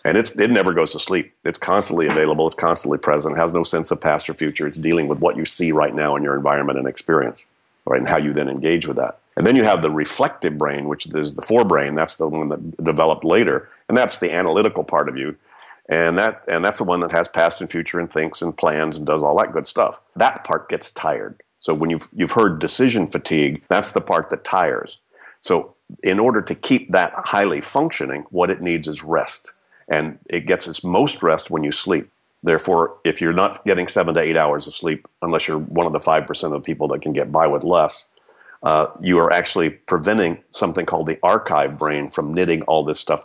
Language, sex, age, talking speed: English, male, 50-69, 230 wpm